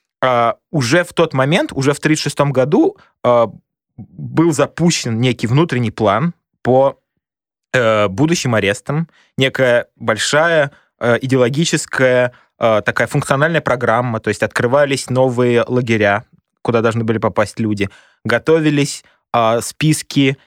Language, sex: Russian, male